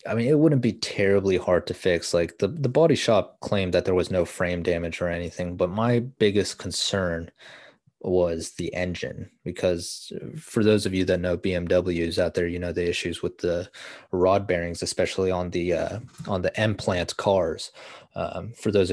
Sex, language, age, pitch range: male, English, 20-39, 85-95 Hz